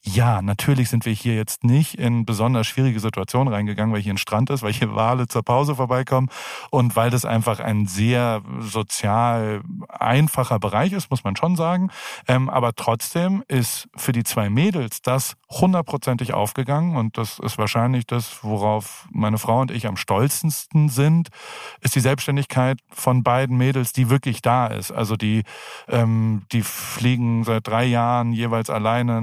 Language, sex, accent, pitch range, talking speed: German, male, German, 110-135 Hz, 165 wpm